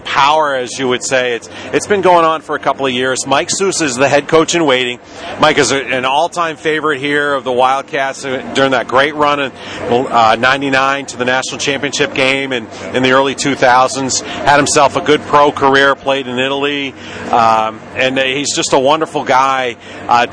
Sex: male